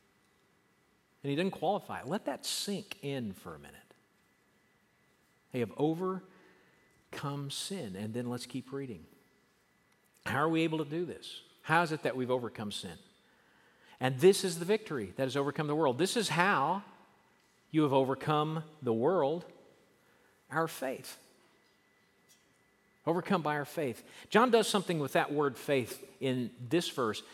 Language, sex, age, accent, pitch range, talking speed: English, male, 50-69, American, 125-165 Hz, 150 wpm